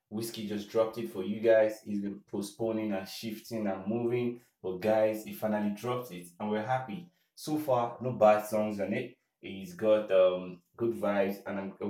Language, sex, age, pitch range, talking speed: English, male, 20-39, 100-120 Hz, 185 wpm